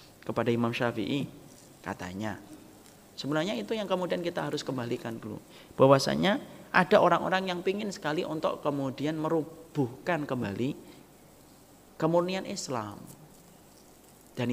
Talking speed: 105 wpm